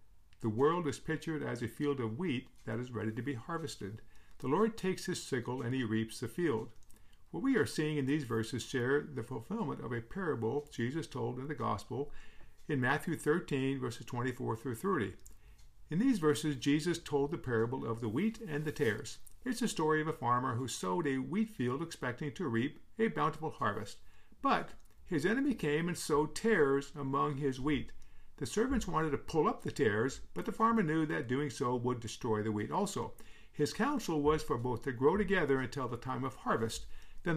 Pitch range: 120-155 Hz